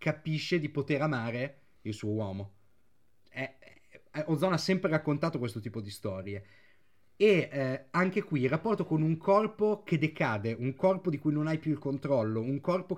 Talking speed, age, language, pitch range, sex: 170 wpm, 30-49, Italian, 125-160 Hz, male